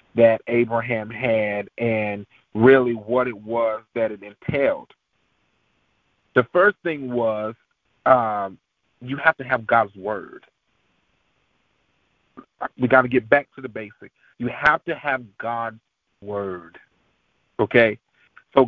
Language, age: English, 40-59